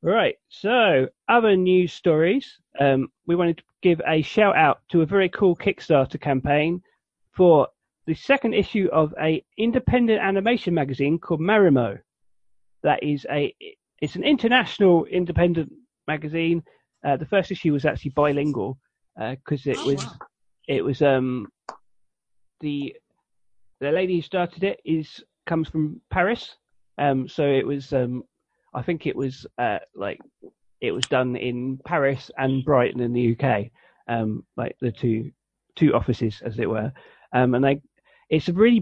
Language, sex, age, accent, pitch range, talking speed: English, male, 40-59, British, 135-175 Hz, 150 wpm